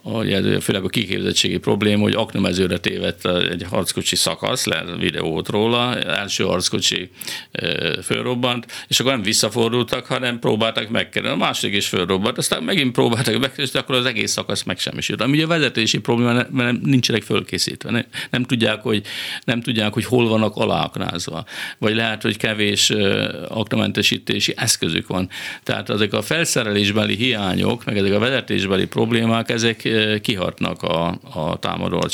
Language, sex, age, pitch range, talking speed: Hungarian, male, 50-69, 100-125 Hz, 145 wpm